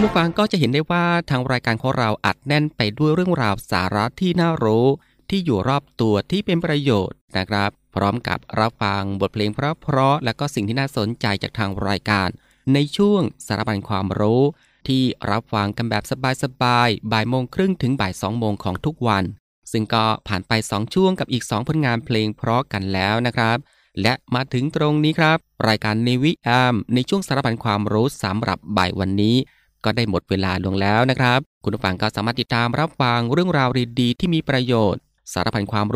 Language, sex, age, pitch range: Thai, male, 20-39, 105-135 Hz